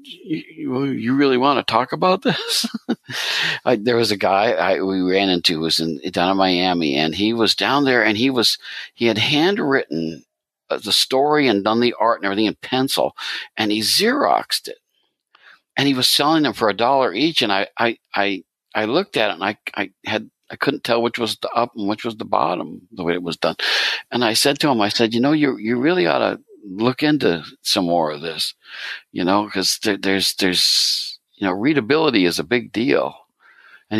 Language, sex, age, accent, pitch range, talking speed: English, male, 60-79, American, 90-130 Hz, 210 wpm